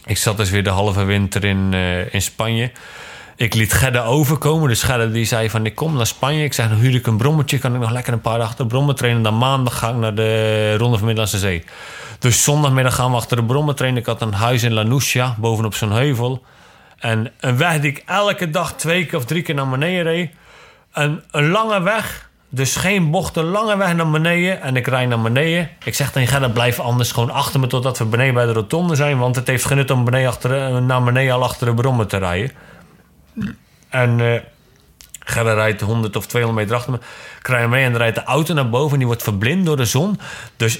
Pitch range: 115-145 Hz